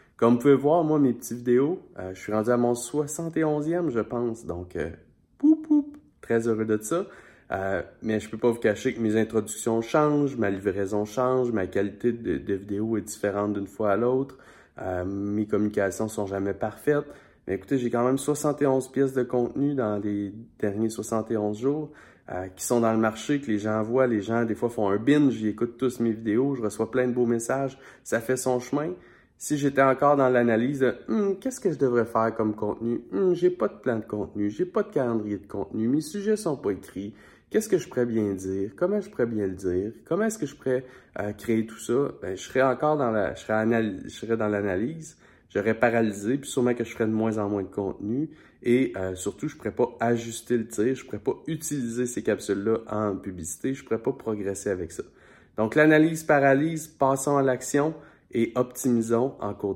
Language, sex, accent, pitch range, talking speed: French, male, Canadian, 105-140 Hz, 215 wpm